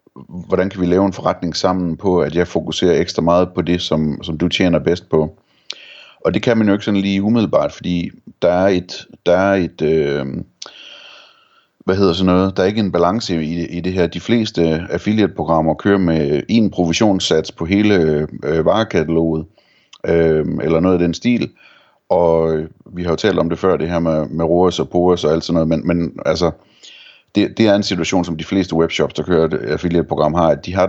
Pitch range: 80-95 Hz